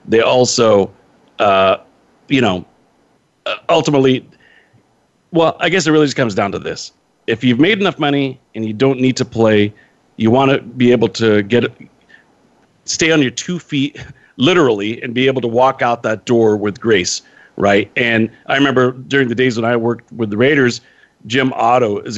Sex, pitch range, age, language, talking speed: male, 110-130 Hz, 40-59, English, 180 wpm